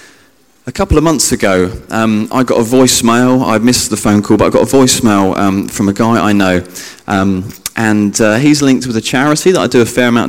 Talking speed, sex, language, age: 235 wpm, male, English, 20-39